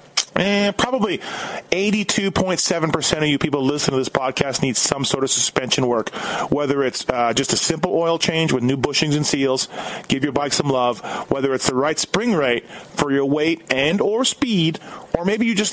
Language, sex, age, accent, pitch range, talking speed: English, male, 30-49, American, 130-170 Hz, 200 wpm